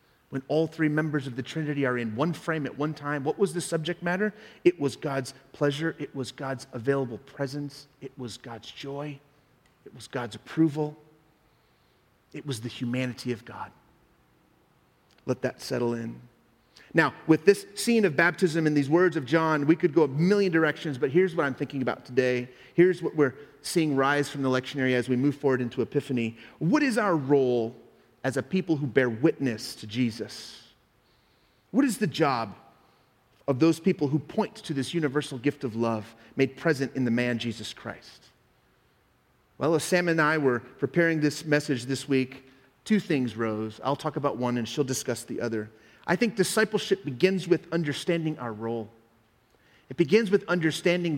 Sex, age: male, 30-49